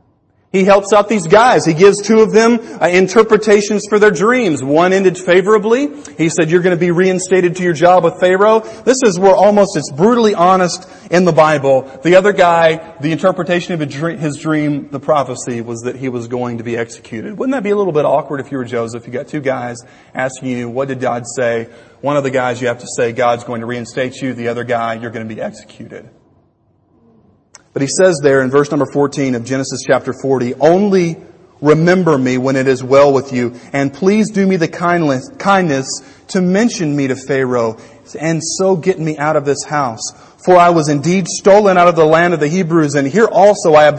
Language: English